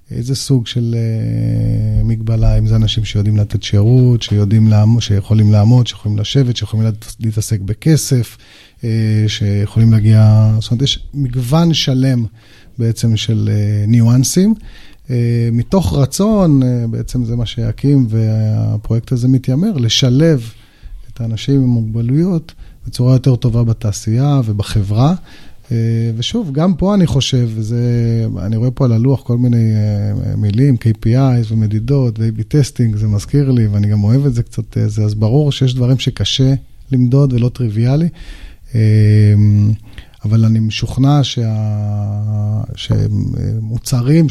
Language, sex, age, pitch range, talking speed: Hebrew, male, 30-49, 110-130 Hz, 125 wpm